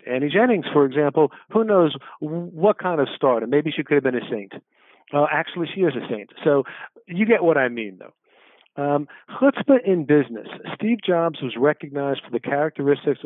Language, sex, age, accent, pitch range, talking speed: English, male, 50-69, American, 125-170 Hz, 185 wpm